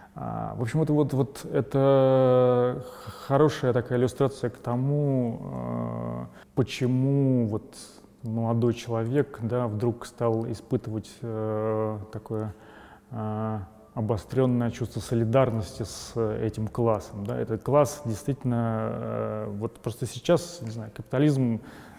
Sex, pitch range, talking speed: male, 110-130 Hz, 100 wpm